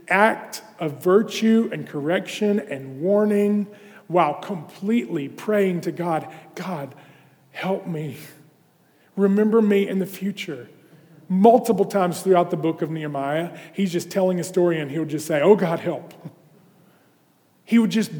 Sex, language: male, English